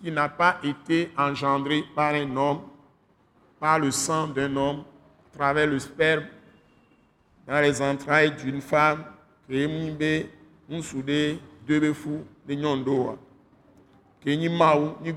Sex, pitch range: male, 135-155 Hz